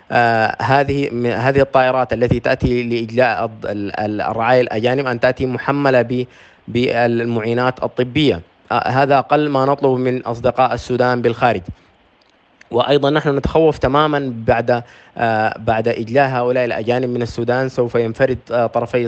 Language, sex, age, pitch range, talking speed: English, male, 20-39, 115-130 Hz, 115 wpm